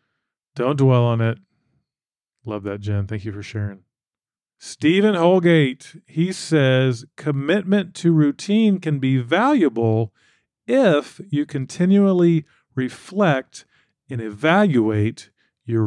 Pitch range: 115-160 Hz